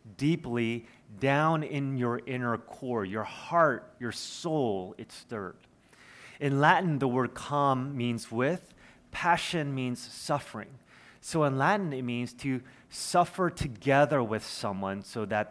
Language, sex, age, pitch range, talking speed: English, male, 30-49, 110-140 Hz, 130 wpm